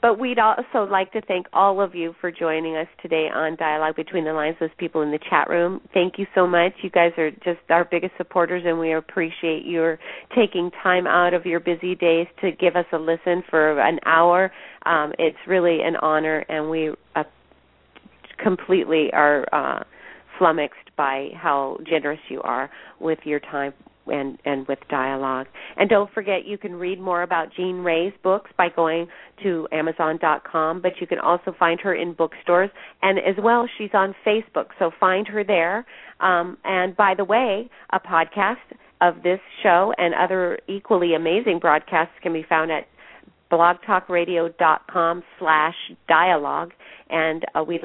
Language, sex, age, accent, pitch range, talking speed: English, female, 40-59, American, 160-190 Hz, 170 wpm